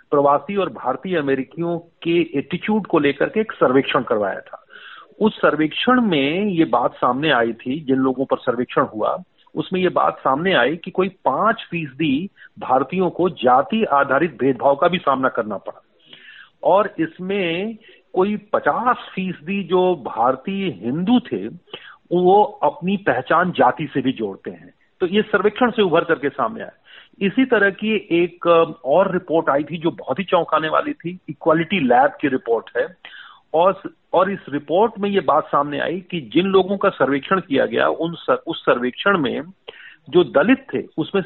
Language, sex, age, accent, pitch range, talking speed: Hindi, male, 40-59, native, 145-200 Hz, 165 wpm